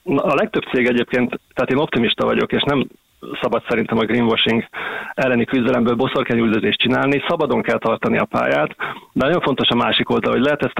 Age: 30-49